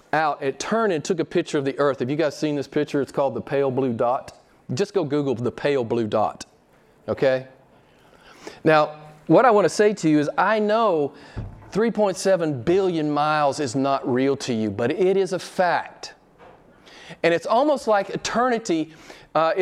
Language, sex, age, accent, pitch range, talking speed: English, male, 40-59, American, 140-200 Hz, 185 wpm